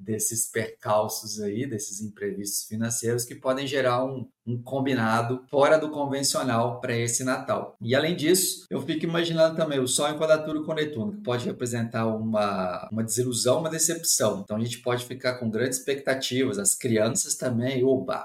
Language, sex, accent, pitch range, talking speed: Portuguese, male, Brazilian, 110-145 Hz, 170 wpm